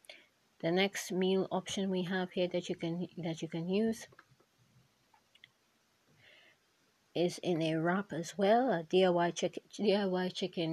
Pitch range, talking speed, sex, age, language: 165-185 Hz, 140 wpm, female, 30-49, English